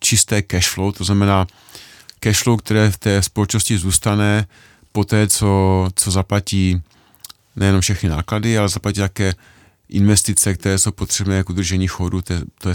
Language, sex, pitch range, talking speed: Czech, male, 90-110 Hz, 150 wpm